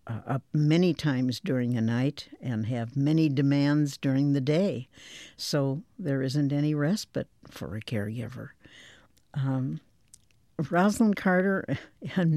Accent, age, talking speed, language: American, 60-79, 120 wpm, English